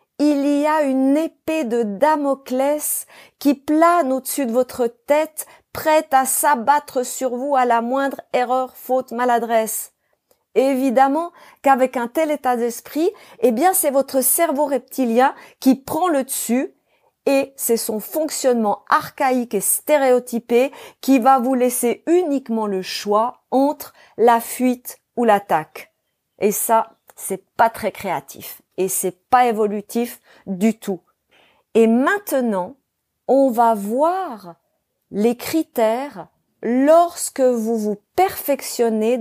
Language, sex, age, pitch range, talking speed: French, female, 40-59, 230-290 Hz, 125 wpm